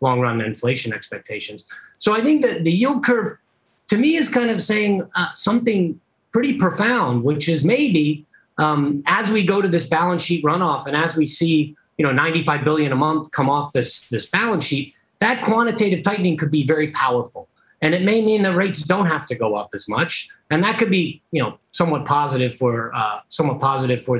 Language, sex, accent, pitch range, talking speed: English, male, American, 125-175 Hz, 200 wpm